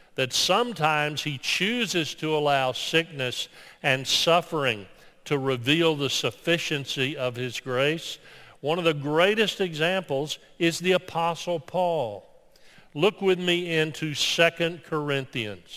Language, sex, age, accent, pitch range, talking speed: English, male, 50-69, American, 135-165 Hz, 120 wpm